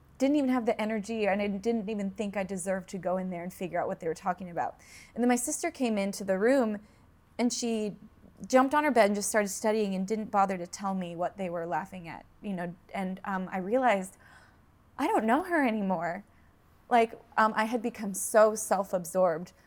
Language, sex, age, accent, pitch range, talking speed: English, female, 20-39, American, 185-220 Hz, 215 wpm